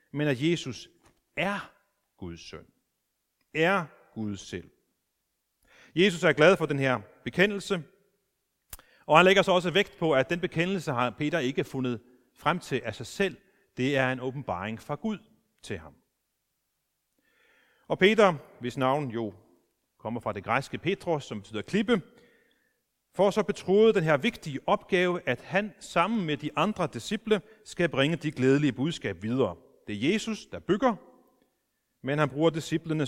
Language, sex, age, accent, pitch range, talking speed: Danish, male, 30-49, native, 125-185 Hz, 155 wpm